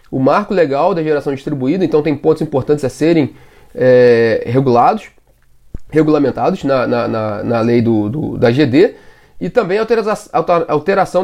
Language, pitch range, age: Portuguese, 150-185 Hz, 20-39